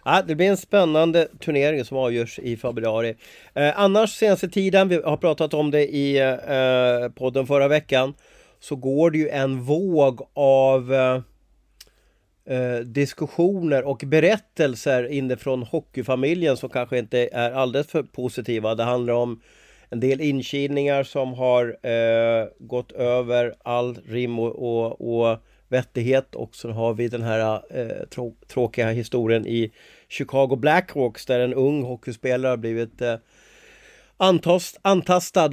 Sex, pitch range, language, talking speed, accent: male, 120-150 Hz, Swedish, 135 wpm, native